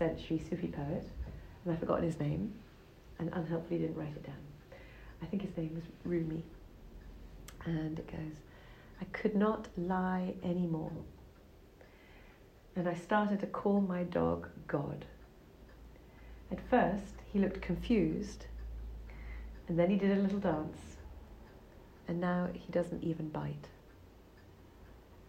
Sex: female